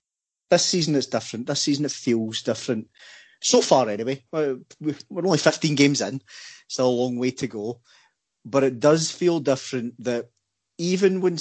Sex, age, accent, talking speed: male, 30-49, British, 170 wpm